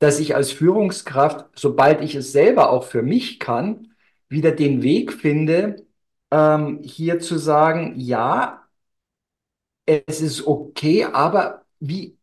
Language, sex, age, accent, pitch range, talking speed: German, male, 50-69, German, 140-165 Hz, 130 wpm